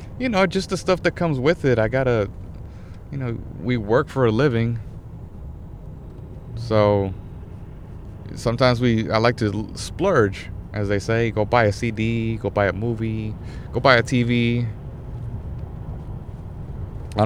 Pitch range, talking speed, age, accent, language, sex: 95-120 Hz, 145 wpm, 30-49, American, English, male